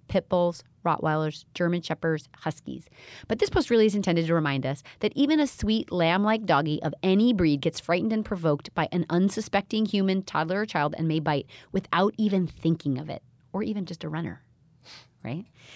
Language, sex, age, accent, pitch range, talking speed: English, female, 30-49, American, 165-235 Hz, 185 wpm